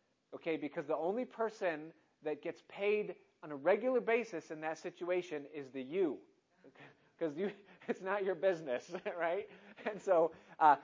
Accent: American